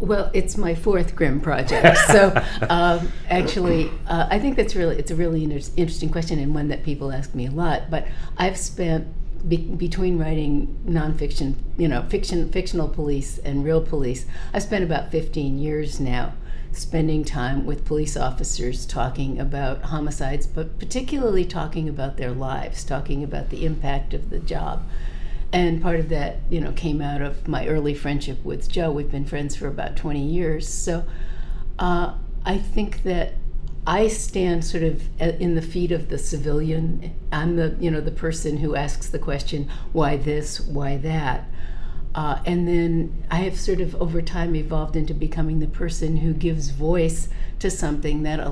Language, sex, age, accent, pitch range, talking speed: English, female, 50-69, American, 140-170 Hz, 175 wpm